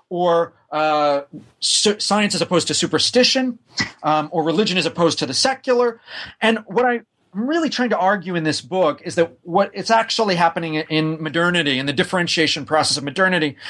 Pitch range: 160-210 Hz